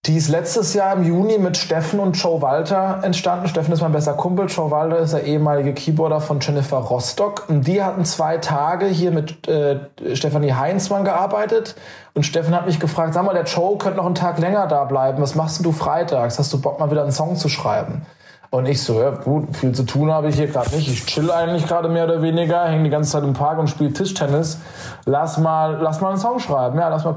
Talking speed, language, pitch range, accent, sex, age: 230 wpm, German, 150-175 Hz, German, male, 20-39